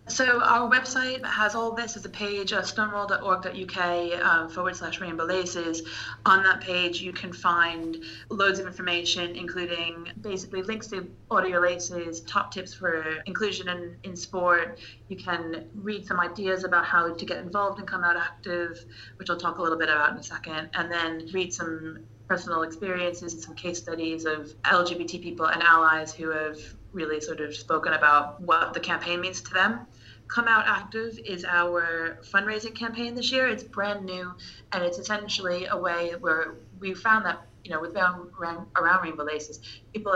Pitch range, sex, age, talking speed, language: 160-185 Hz, female, 30-49, 180 wpm, English